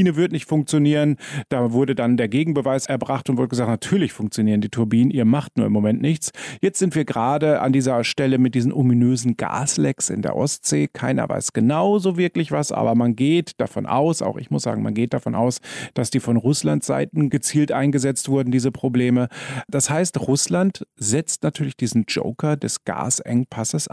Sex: male